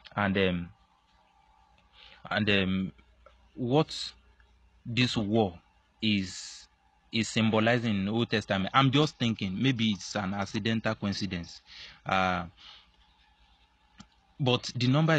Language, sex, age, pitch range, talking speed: English, male, 30-49, 95-120 Hz, 105 wpm